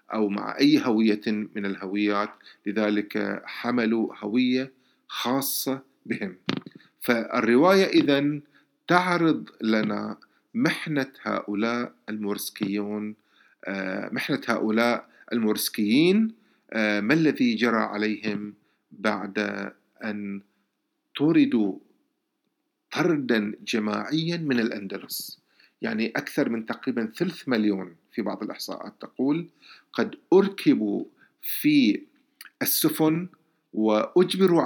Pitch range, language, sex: 105-145 Hz, Arabic, male